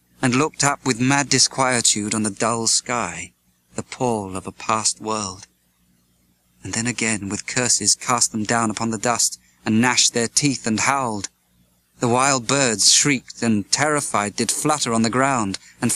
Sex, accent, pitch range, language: male, British, 90-125 Hz, English